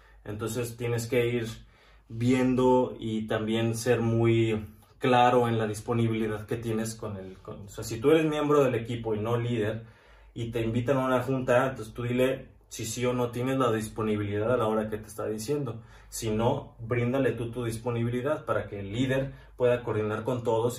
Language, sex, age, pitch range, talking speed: Spanish, male, 20-39, 110-125 Hz, 190 wpm